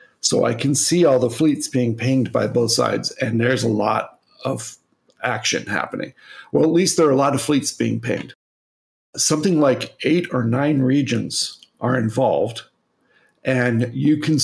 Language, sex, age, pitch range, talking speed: English, male, 50-69, 120-150 Hz, 170 wpm